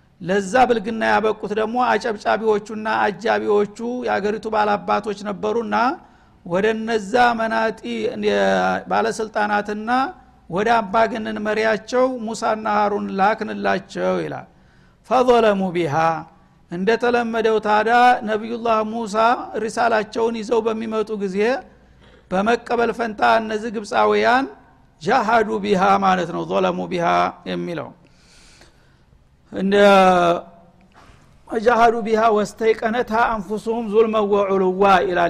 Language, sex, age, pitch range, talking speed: Amharic, male, 60-79, 200-230 Hz, 80 wpm